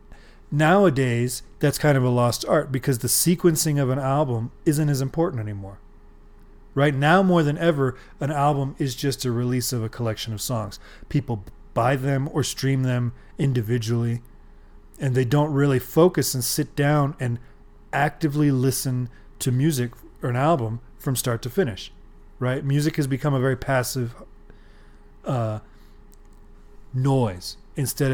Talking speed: 150 wpm